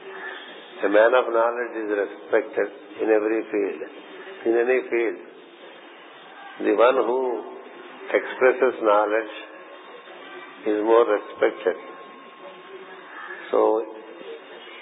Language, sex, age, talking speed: English, male, 50-69, 85 wpm